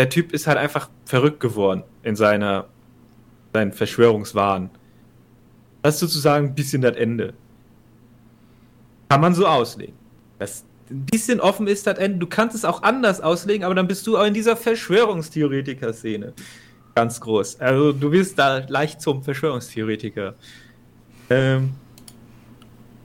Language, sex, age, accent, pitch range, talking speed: German, male, 30-49, German, 115-135 Hz, 135 wpm